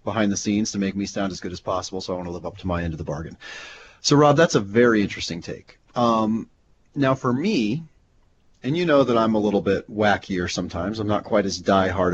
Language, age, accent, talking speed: English, 30-49, American, 240 wpm